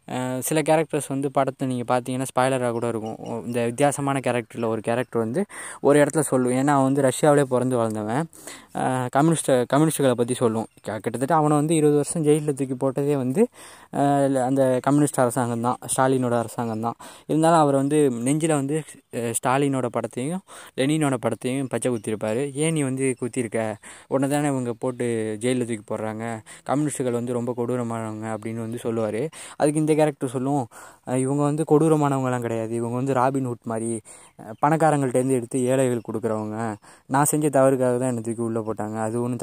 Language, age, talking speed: Tamil, 20-39, 140 wpm